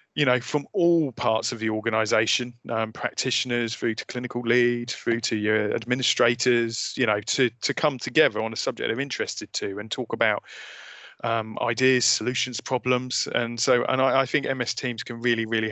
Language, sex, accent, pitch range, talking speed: English, male, British, 115-125 Hz, 185 wpm